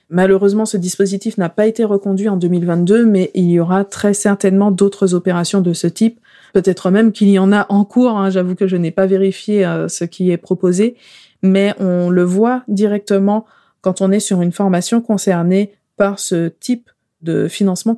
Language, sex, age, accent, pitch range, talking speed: French, female, 20-39, French, 185-230 Hz, 190 wpm